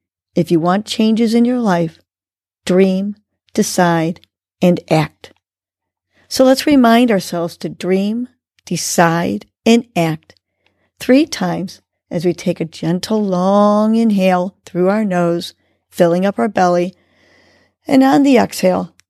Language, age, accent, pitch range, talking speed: English, 50-69, American, 155-210 Hz, 125 wpm